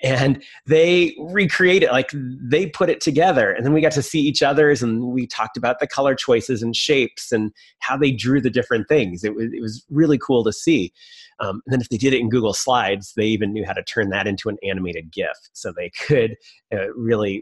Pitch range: 105-140 Hz